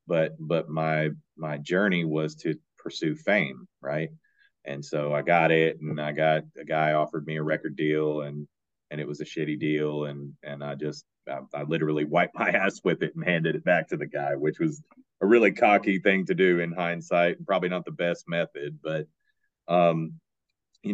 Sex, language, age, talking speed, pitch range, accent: male, English, 30-49, 200 wpm, 75-85 Hz, American